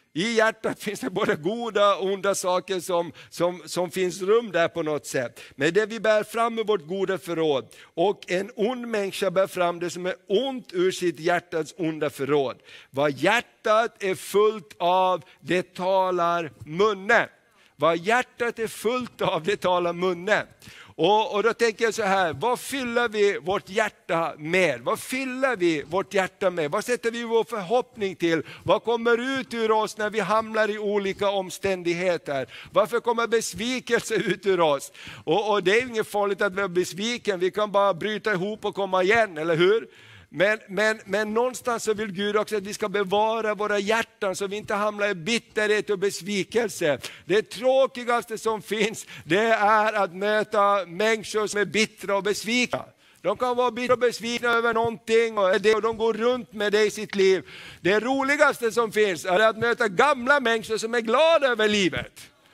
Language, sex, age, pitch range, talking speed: Swedish, male, 50-69, 185-230 Hz, 180 wpm